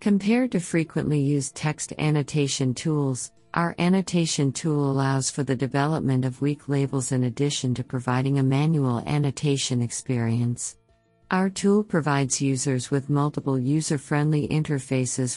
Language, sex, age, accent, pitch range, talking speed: English, female, 50-69, American, 130-150 Hz, 130 wpm